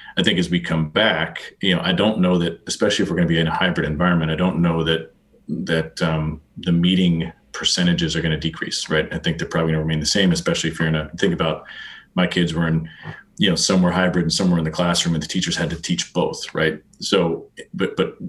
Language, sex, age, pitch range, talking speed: English, male, 30-49, 80-95 Hz, 235 wpm